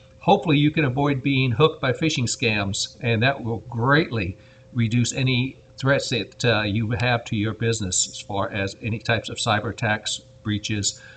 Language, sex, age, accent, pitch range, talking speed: English, male, 60-79, American, 115-145 Hz, 170 wpm